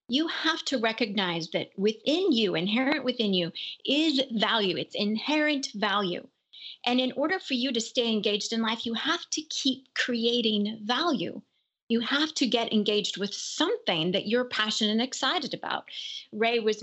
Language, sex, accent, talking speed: English, female, American, 165 wpm